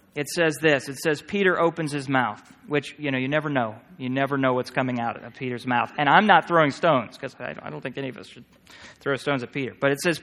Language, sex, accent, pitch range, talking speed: English, male, American, 120-160 Hz, 260 wpm